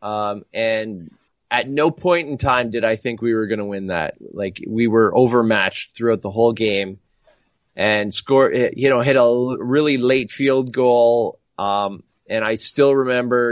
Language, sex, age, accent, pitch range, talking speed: English, male, 20-39, American, 105-125 Hz, 175 wpm